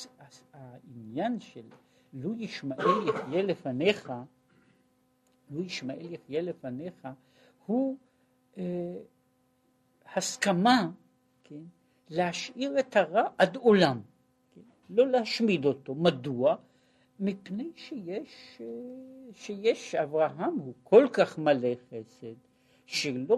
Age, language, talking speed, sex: 60-79, Hebrew, 85 wpm, male